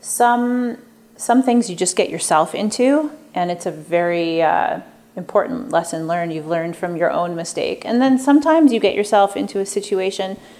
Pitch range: 180-240 Hz